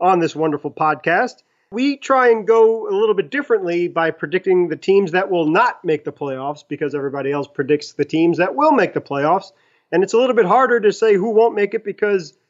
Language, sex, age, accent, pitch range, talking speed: English, male, 30-49, American, 150-200 Hz, 220 wpm